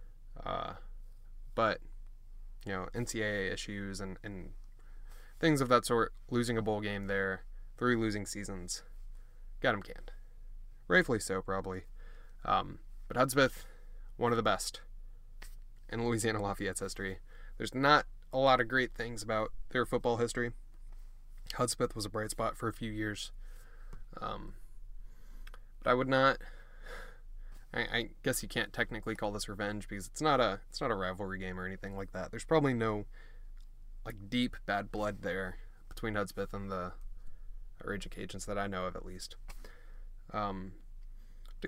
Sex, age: male, 10-29